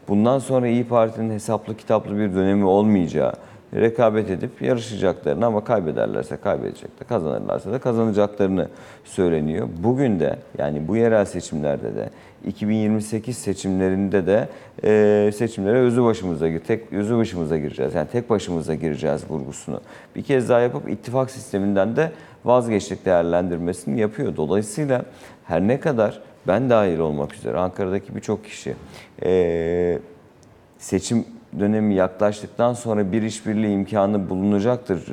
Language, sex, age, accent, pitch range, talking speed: Turkish, male, 50-69, native, 90-115 Hz, 125 wpm